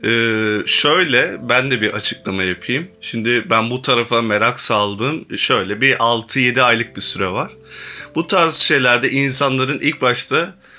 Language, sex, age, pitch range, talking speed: Turkish, male, 20-39, 115-160 Hz, 145 wpm